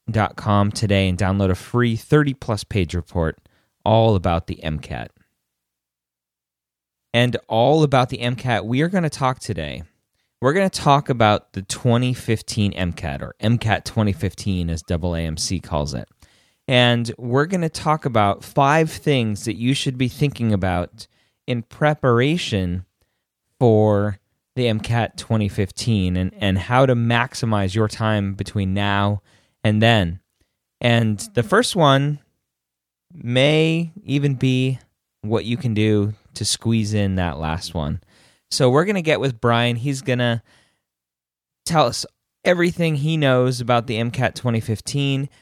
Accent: American